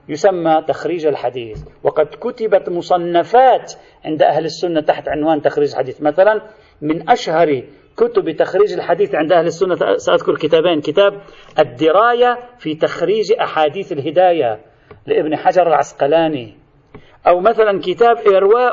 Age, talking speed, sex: 40-59, 120 wpm, male